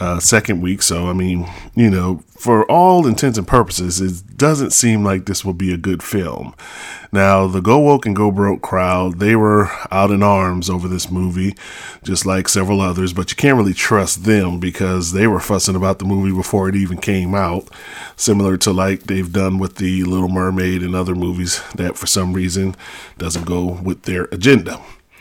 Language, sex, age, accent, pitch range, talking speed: English, male, 30-49, American, 90-110 Hz, 195 wpm